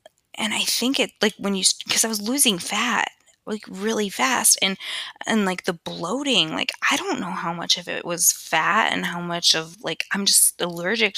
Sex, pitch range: female, 165-220 Hz